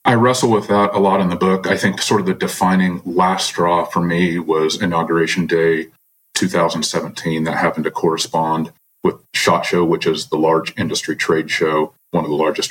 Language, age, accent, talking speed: English, 40-59, American, 195 wpm